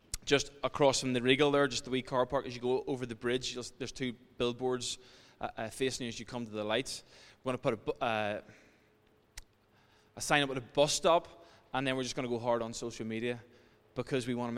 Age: 20-39